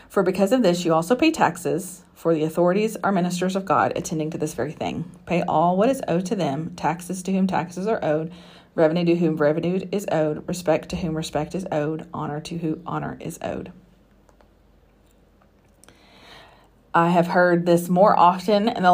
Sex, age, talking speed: female, 40-59, 185 wpm